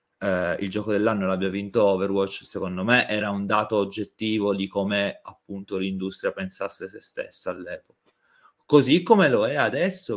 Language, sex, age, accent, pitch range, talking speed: Italian, male, 30-49, native, 95-110 Hz, 155 wpm